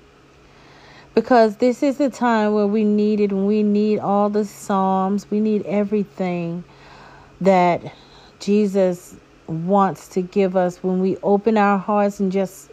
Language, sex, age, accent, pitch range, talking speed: English, female, 40-59, American, 195-235 Hz, 145 wpm